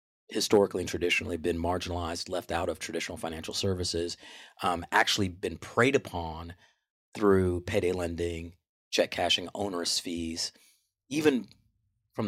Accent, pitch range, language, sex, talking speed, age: American, 85-110 Hz, English, male, 120 wpm, 40-59